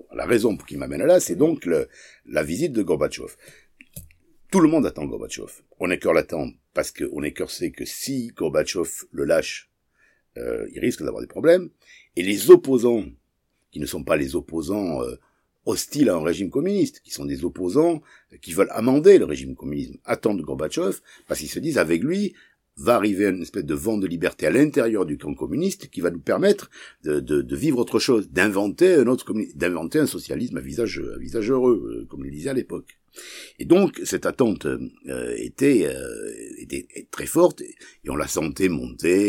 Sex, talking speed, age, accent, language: male, 200 wpm, 60-79, French, French